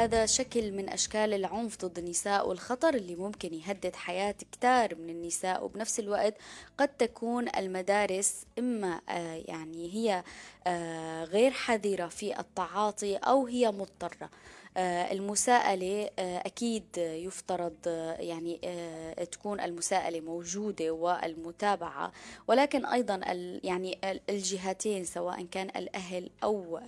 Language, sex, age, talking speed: Arabic, female, 20-39, 105 wpm